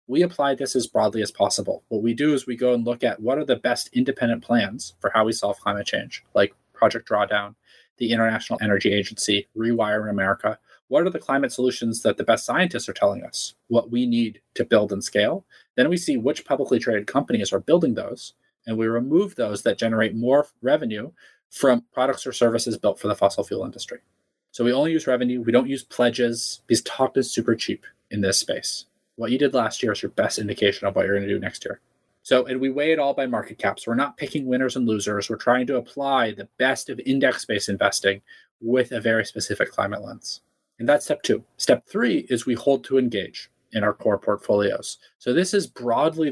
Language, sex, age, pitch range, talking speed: English, male, 20-39, 115-140 Hz, 220 wpm